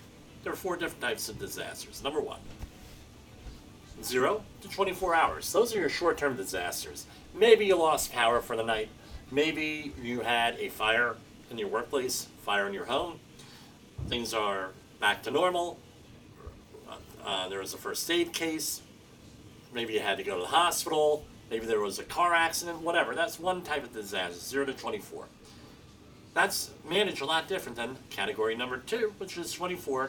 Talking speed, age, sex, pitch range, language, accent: 170 wpm, 40-59, male, 115-165 Hz, English, American